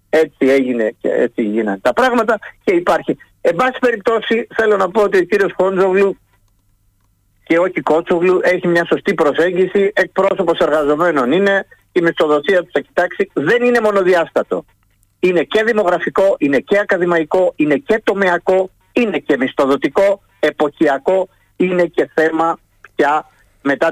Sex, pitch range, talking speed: male, 140-200 Hz, 140 wpm